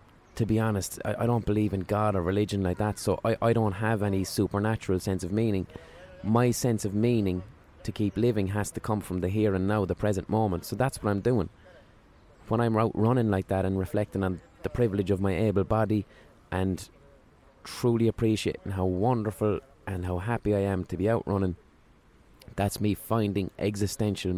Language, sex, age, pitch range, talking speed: English, male, 20-39, 95-110 Hz, 195 wpm